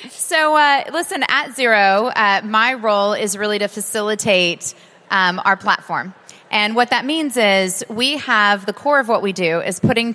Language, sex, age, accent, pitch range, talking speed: English, female, 30-49, American, 175-215 Hz, 175 wpm